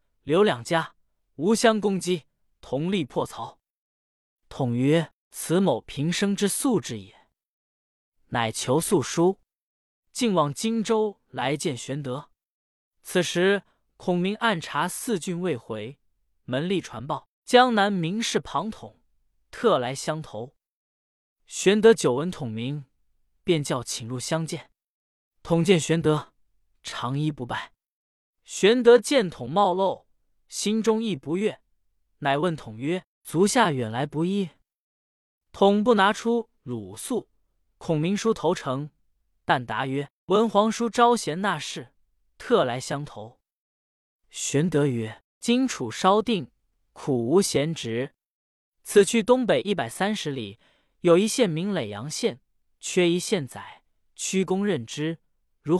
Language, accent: Chinese, native